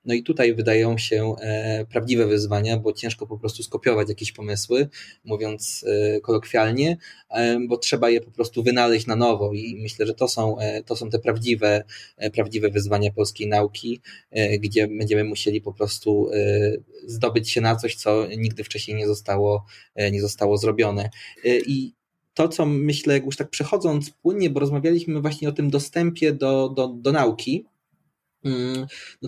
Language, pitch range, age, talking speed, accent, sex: Polish, 110-140 Hz, 20-39, 170 wpm, native, male